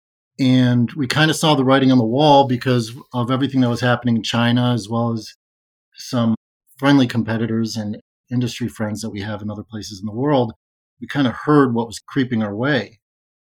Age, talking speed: 30-49, 200 wpm